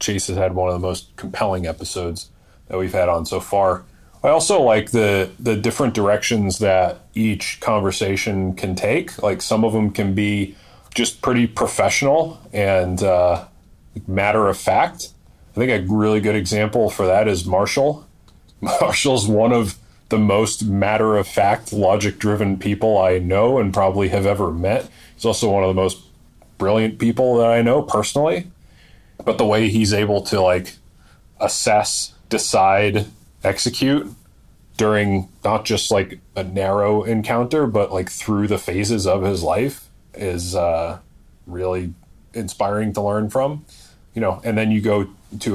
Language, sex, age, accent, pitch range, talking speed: English, male, 30-49, American, 95-110 Hz, 160 wpm